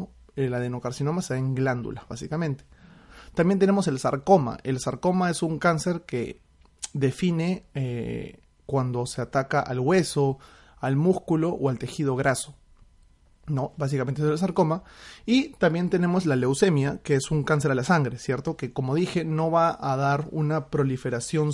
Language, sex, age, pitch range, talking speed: Spanish, male, 30-49, 130-165 Hz, 160 wpm